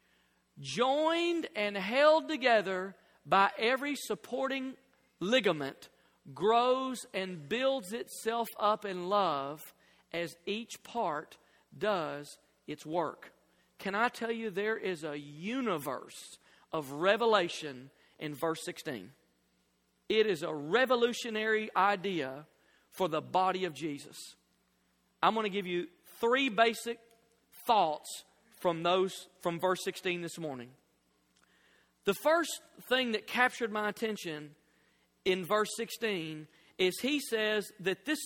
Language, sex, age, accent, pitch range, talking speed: English, male, 40-59, American, 170-230 Hz, 115 wpm